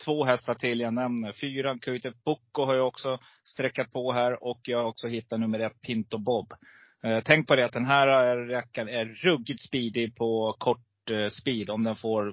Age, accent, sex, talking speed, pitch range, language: 30-49, native, male, 200 wpm, 105-125 Hz, Swedish